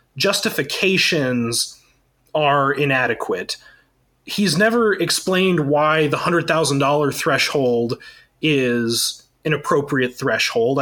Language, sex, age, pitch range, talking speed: English, male, 30-49, 135-175 Hz, 80 wpm